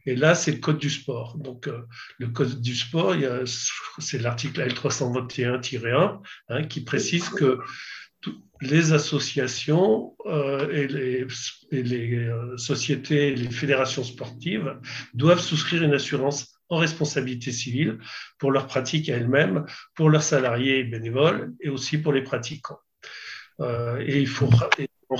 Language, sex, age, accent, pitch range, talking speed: French, male, 50-69, French, 125-150 Hz, 150 wpm